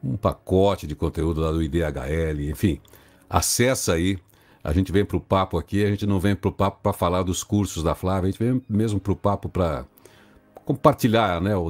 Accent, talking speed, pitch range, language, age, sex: Brazilian, 205 wpm, 85-110 Hz, Portuguese, 60-79, male